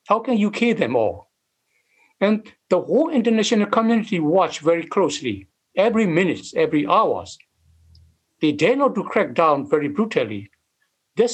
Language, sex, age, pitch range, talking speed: English, male, 60-79, 150-225 Hz, 145 wpm